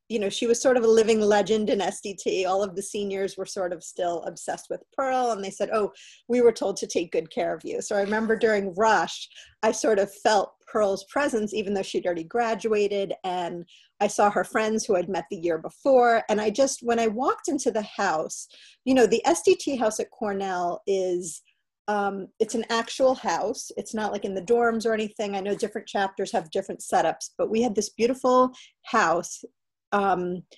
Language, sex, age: English, female, 40-59